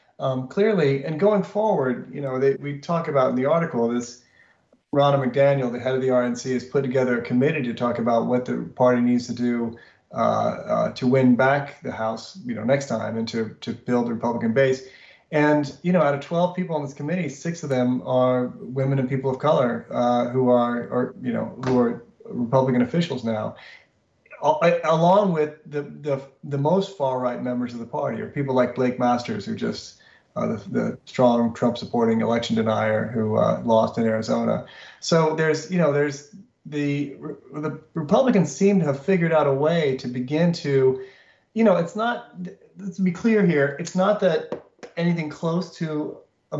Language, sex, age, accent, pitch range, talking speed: English, male, 30-49, American, 125-165 Hz, 190 wpm